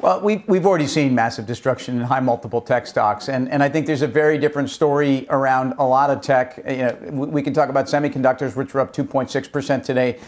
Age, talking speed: 50-69, 220 wpm